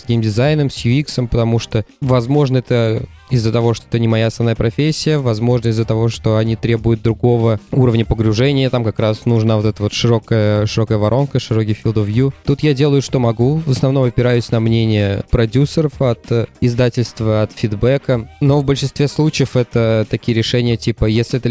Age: 20-39